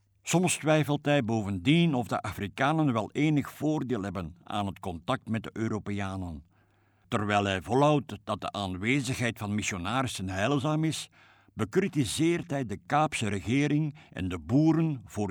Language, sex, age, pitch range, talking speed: Dutch, male, 60-79, 95-135 Hz, 140 wpm